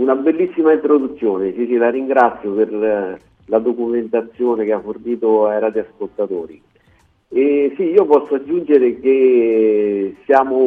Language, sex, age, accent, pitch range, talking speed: Italian, male, 40-59, native, 110-140 Hz, 125 wpm